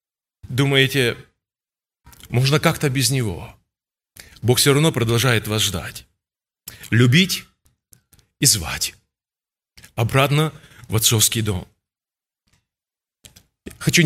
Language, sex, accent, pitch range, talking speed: Russian, male, native, 115-160 Hz, 80 wpm